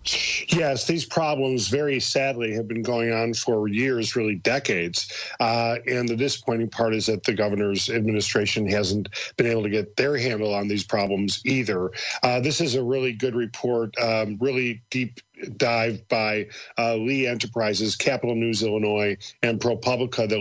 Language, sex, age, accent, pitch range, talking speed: English, male, 40-59, American, 110-130 Hz, 160 wpm